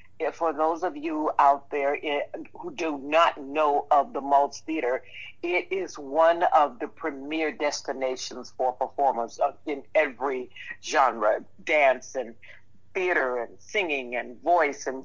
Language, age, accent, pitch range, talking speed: English, 50-69, American, 130-165 Hz, 135 wpm